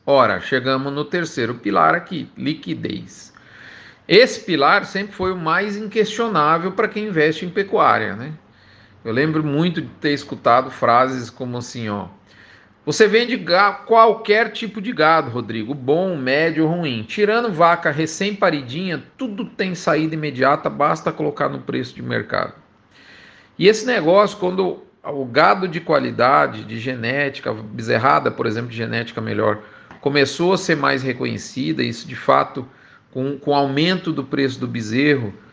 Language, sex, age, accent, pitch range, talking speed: Portuguese, male, 40-59, Brazilian, 125-185 Hz, 145 wpm